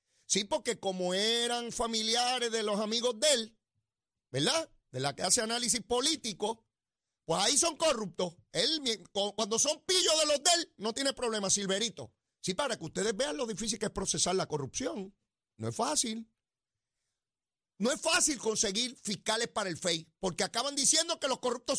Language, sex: Spanish, male